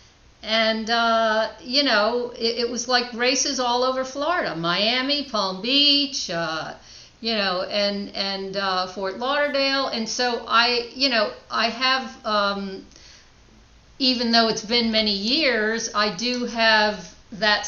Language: English